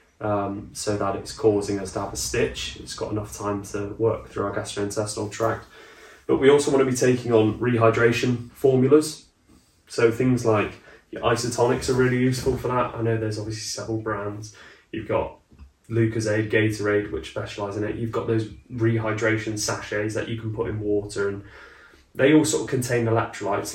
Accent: British